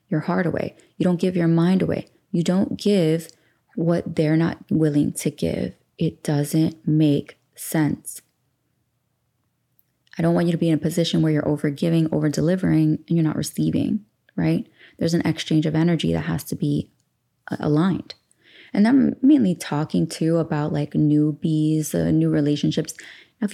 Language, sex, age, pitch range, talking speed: English, female, 20-39, 155-175 Hz, 165 wpm